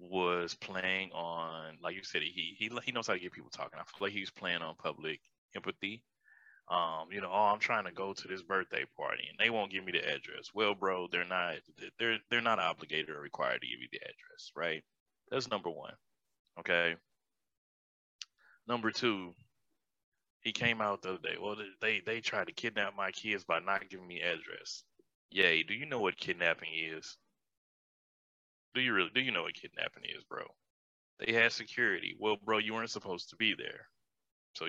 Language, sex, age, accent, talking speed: English, male, 20-39, American, 195 wpm